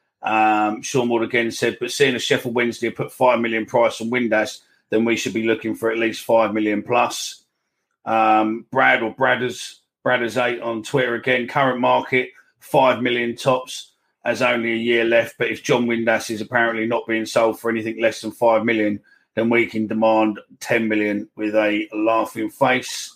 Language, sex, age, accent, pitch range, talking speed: English, male, 40-59, British, 110-125 Hz, 185 wpm